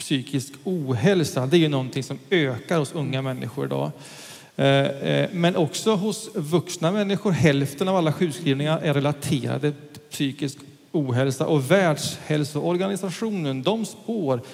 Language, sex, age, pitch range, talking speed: English, male, 40-59, 140-180 Hz, 125 wpm